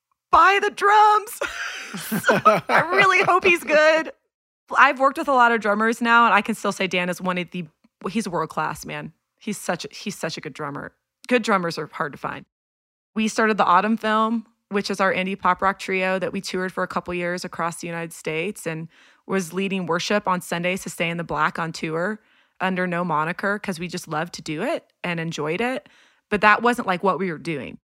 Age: 30-49